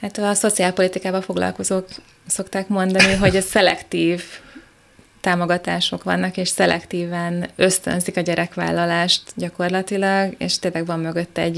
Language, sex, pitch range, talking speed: Hungarian, female, 165-185 Hz, 110 wpm